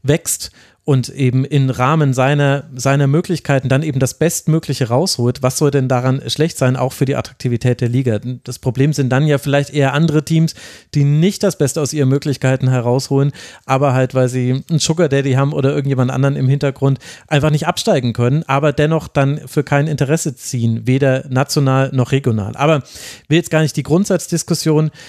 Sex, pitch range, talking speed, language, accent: male, 130-165 Hz, 185 wpm, German, German